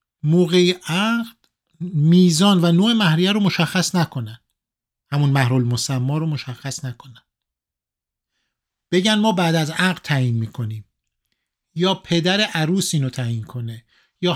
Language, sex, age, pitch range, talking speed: Persian, male, 50-69, 130-180 Hz, 115 wpm